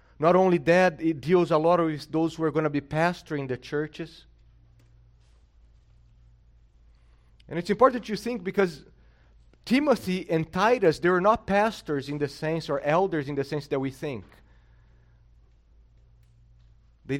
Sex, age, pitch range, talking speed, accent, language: male, 30-49, 105-165 Hz, 145 wpm, Brazilian, English